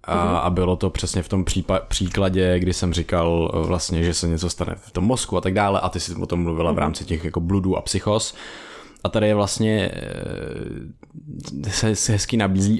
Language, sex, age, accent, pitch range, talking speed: Czech, male, 20-39, native, 90-105 Hz, 195 wpm